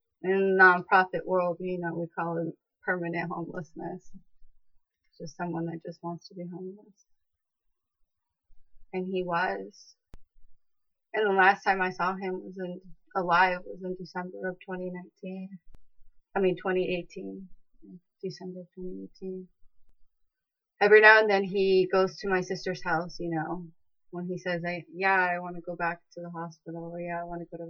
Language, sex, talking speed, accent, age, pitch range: English, female, 160 wpm, American, 20-39, 165-185 Hz